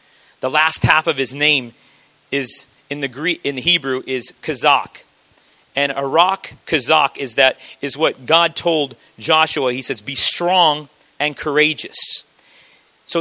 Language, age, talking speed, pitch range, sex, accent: English, 40-59, 145 wpm, 140-175 Hz, male, American